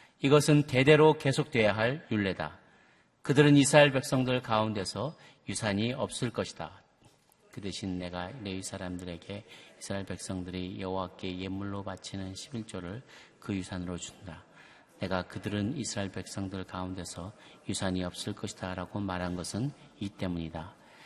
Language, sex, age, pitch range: Korean, male, 40-59, 90-115 Hz